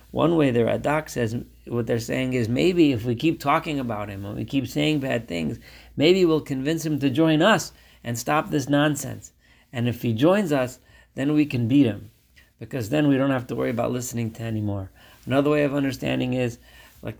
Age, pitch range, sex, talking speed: 40-59, 110-130 Hz, male, 210 wpm